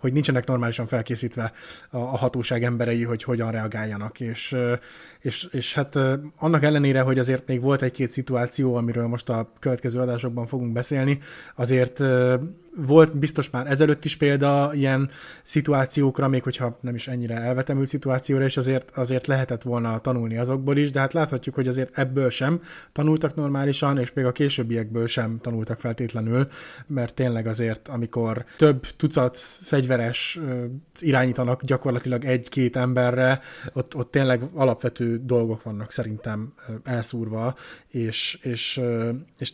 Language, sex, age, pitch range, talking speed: Hungarian, male, 20-39, 120-140 Hz, 135 wpm